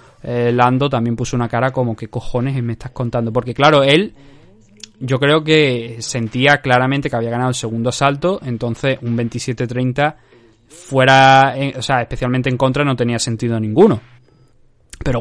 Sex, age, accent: male, 20-39, Spanish